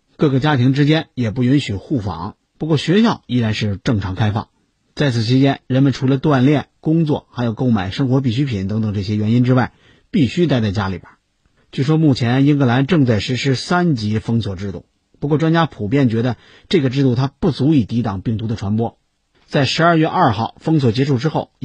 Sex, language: male, Chinese